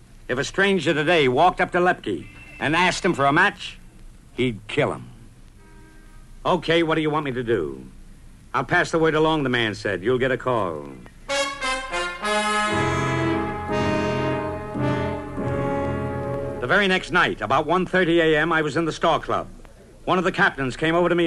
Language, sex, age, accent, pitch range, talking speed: English, male, 60-79, American, 120-175 Hz, 165 wpm